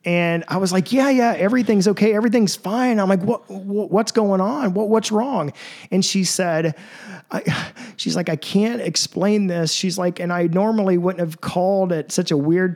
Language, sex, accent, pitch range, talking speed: English, male, American, 160-205 Hz, 200 wpm